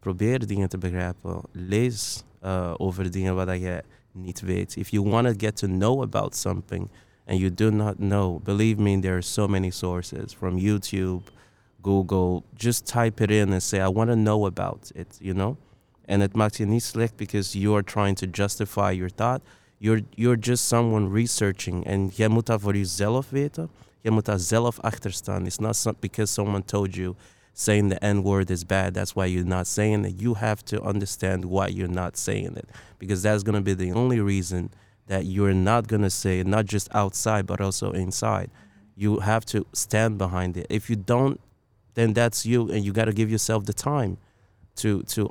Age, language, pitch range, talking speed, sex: 20-39, Dutch, 95-110 Hz, 195 wpm, male